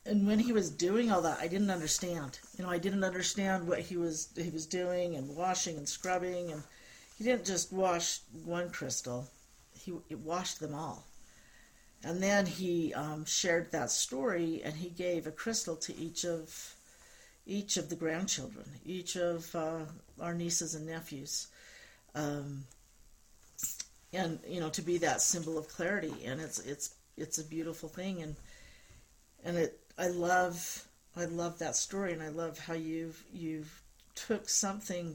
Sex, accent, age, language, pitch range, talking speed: female, American, 50-69, English, 150-180 Hz, 165 wpm